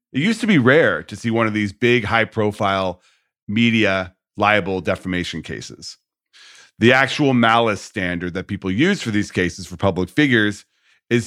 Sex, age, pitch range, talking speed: male, 40-59, 95-130 Hz, 160 wpm